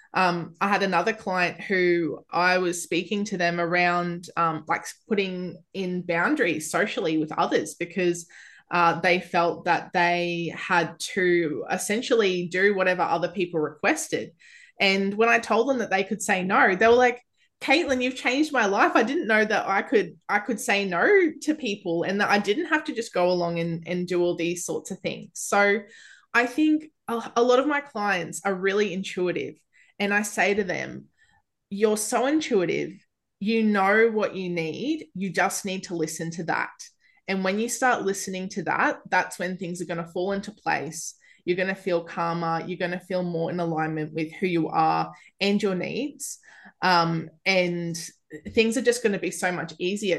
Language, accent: English, Australian